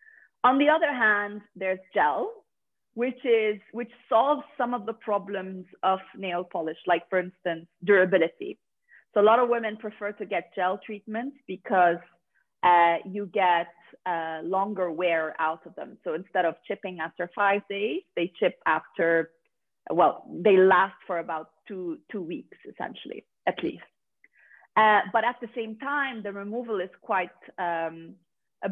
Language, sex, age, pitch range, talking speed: English, female, 30-49, 170-220 Hz, 155 wpm